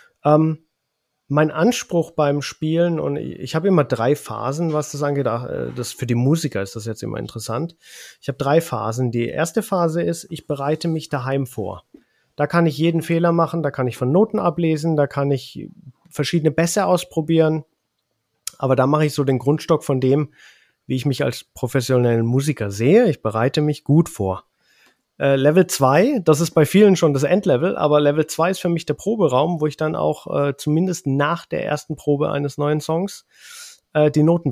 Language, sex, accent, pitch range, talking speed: German, male, German, 135-170 Hz, 185 wpm